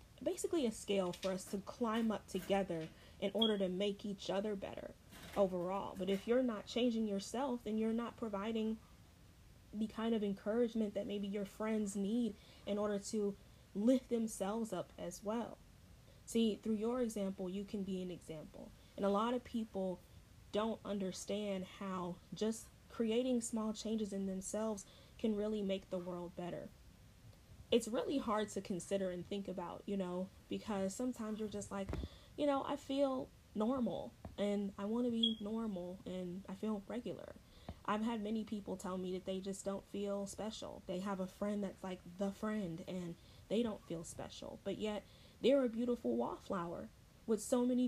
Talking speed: 170 wpm